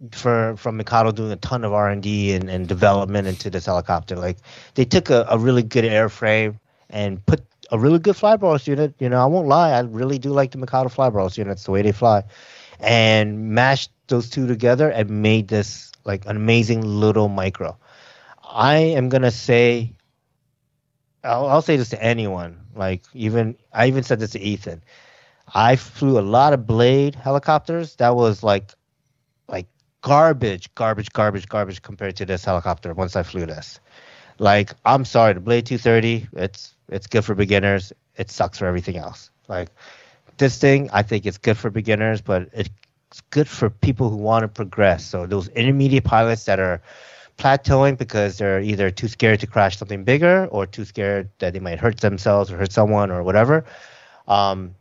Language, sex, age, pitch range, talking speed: English, male, 30-49, 100-130 Hz, 180 wpm